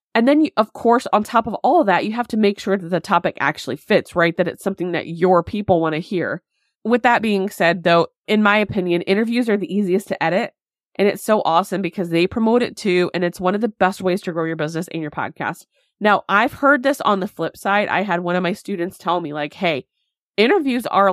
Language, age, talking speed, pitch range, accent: English, 20-39, 245 wpm, 165-210 Hz, American